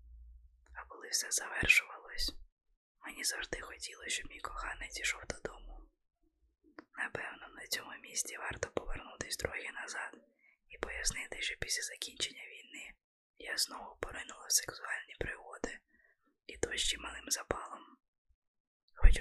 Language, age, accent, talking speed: Ukrainian, 20-39, native, 120 wpm